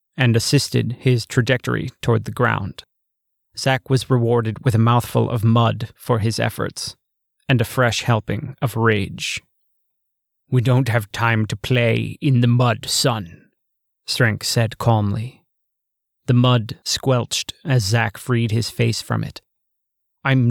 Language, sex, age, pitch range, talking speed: English, male, 30-49, 115-130 Hz, 140 wpm